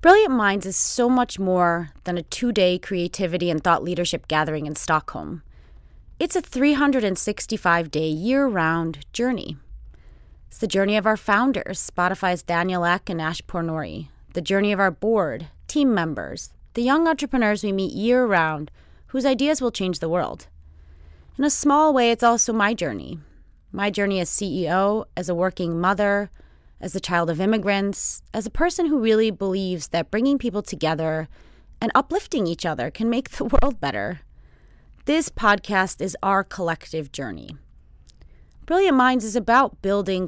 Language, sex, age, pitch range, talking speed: English, female, 30-49, 170-230 Hz, 155 wpm